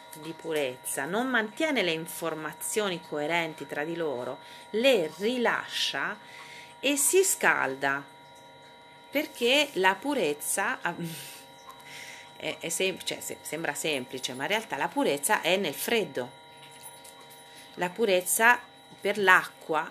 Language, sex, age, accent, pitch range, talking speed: Italian, female, 40-59, native, 155-220 Hz, 110 wpm